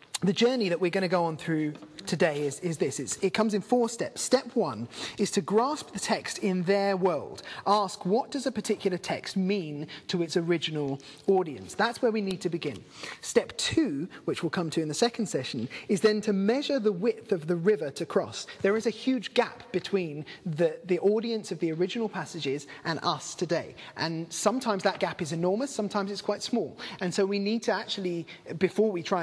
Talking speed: 205 wpm